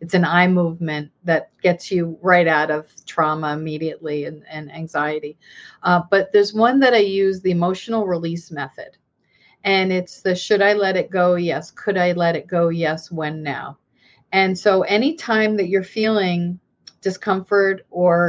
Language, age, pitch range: English, 40-59, 170-210 Hz